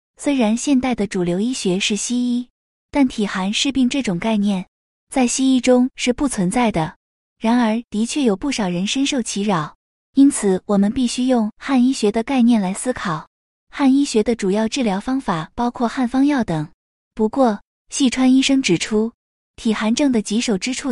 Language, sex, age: Chinese, female, 20-39